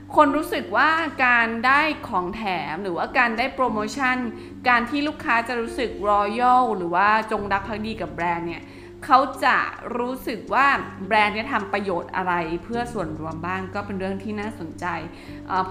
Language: Thai